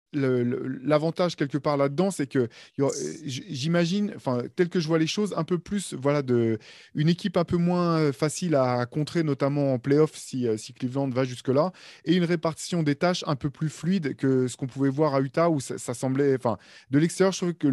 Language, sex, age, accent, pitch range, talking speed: French, male, 20-39, French, 125-155 Hz, 215 wpm